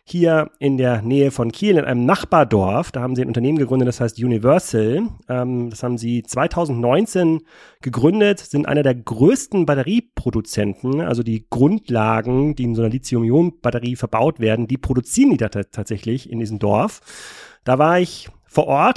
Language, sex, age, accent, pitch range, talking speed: German, male, 40-59, German, 120-145 Hz, 160 wpm